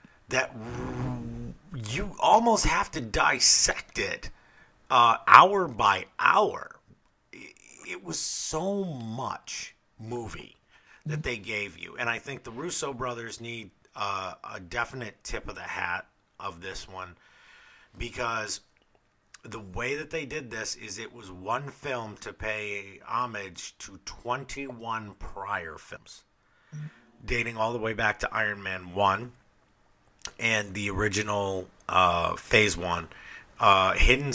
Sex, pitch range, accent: male, 100-120 Hz, American